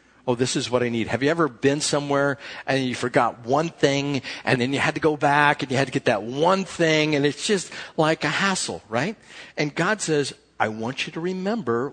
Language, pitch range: English, 120-175 Hz